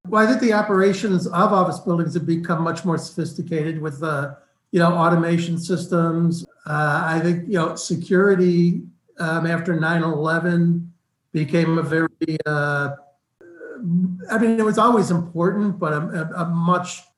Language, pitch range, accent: English, 150-180 Hz, American